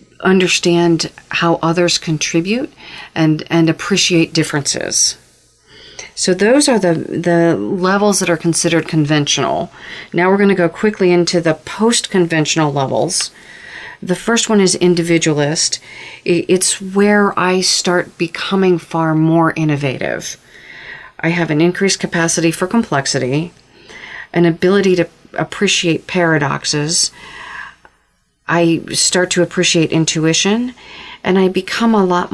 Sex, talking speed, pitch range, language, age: female, 115 wpm, 155-180 Hz, English, 40-59